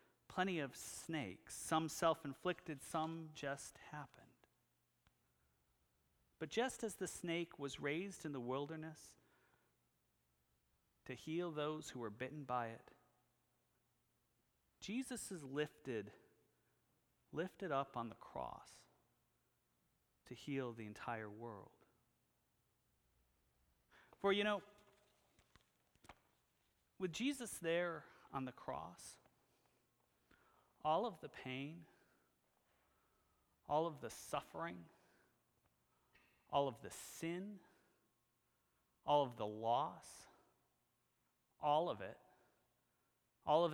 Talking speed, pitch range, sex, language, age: 95 wpm, 105-165 Hz, male, English, 40-59